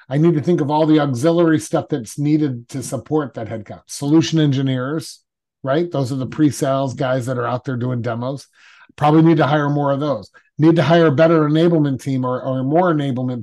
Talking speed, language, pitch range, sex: 210 wpm, English, 130-160 Hz, male